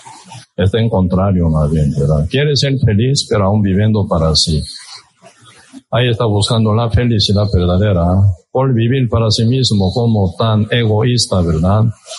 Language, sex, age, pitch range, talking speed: Spanish, male, 60-79, 100-115 Hz, 145 wpm